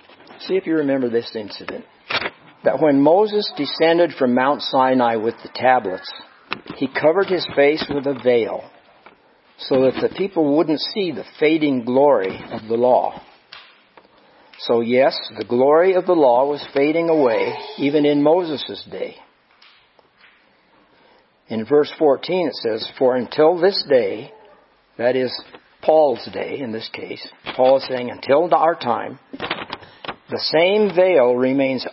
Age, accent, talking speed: 60-79, American, 140 wpm